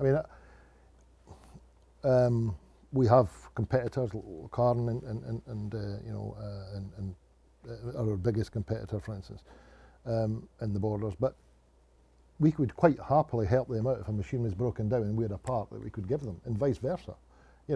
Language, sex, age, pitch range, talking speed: English, male, 50-69, 105-135 Hz, 185 wpm